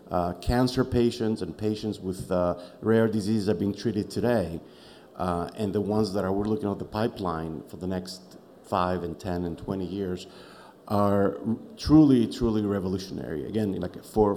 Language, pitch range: English, 90-105 Hz